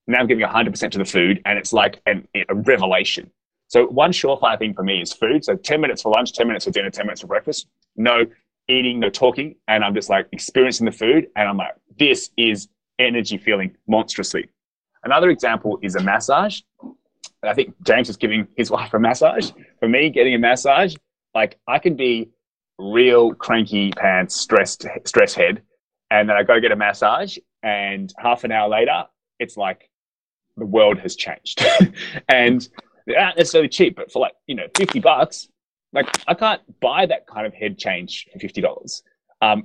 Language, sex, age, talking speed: English, male, 20-39, 190 wpm